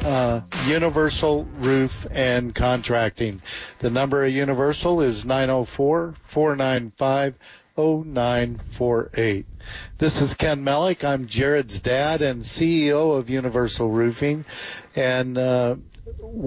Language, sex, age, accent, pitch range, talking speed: English, male, 50-69, American, 120-140 Hz, 90 wpm